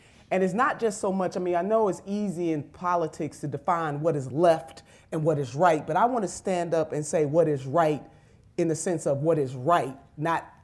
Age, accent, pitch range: 30-49, American, 145-195 Hz